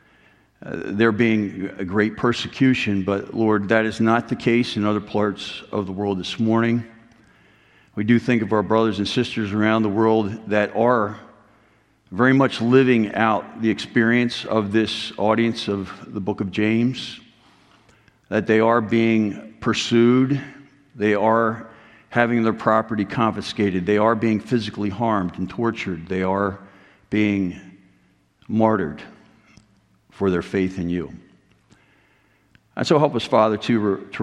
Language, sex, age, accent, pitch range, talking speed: English, male, 50-69, American, 100-115 Hz, 145 wpm